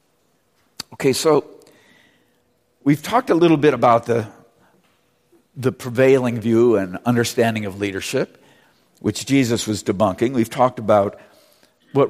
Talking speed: 120 wpm